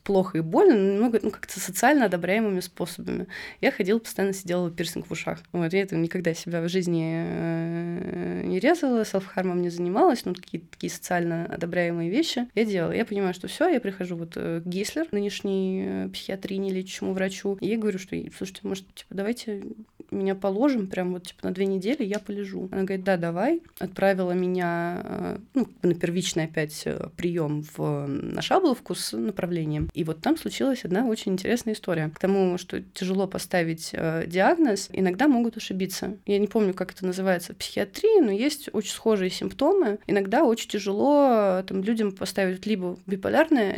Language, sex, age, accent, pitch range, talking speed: Russian, female, 20-39, native, 180-220 Hz, 165 wpm